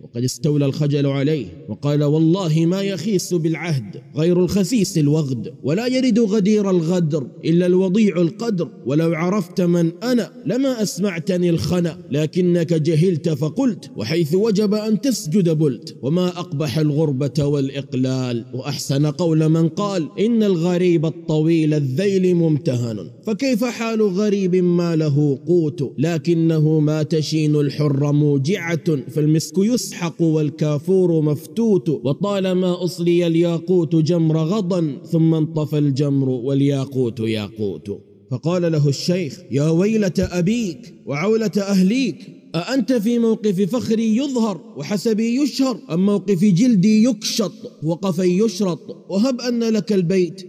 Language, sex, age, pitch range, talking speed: Arabic, male, 30-49, 155-210 Hz, 115 wpm